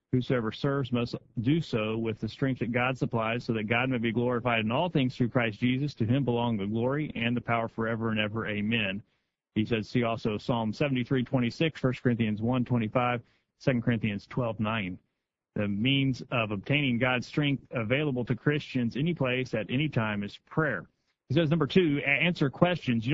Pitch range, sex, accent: 120-140 Hz, male, American